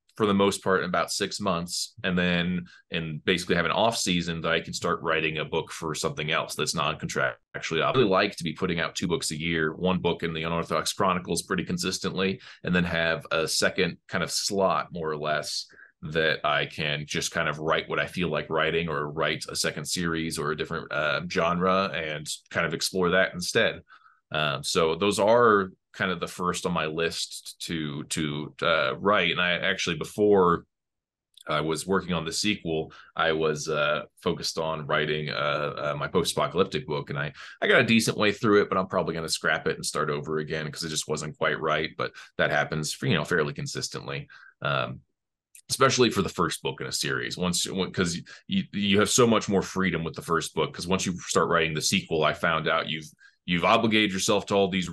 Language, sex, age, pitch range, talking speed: English, male, 20-39, 80-95 Hz, 215 wpm